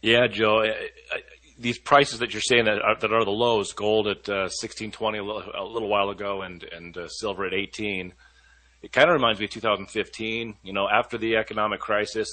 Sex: male